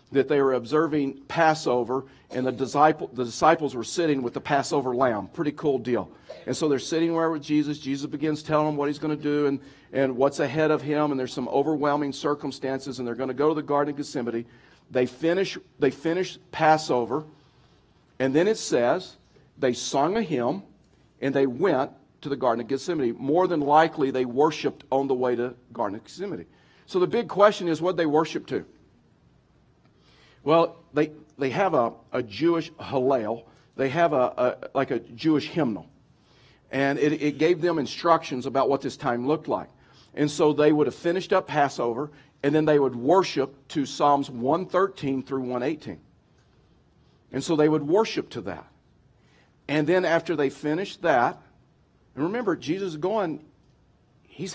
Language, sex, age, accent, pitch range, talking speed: English, male, 50-69, American, 130-155 Hz, 180 wpm